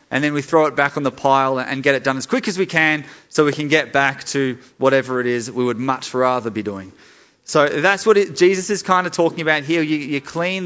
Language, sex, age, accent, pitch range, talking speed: English, male, 30-49, Australian, 125-165 Hz, 260 wpm